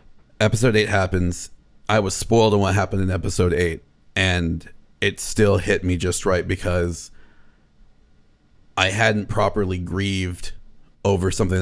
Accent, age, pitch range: American, 30-49, 90-105 Hz